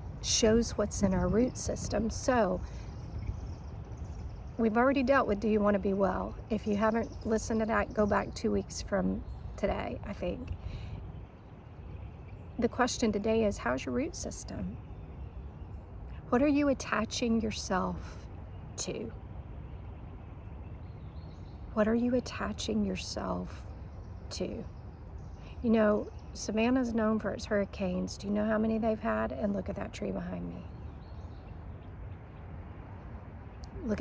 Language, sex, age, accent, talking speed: English, female, 50-69, American, 130 wpm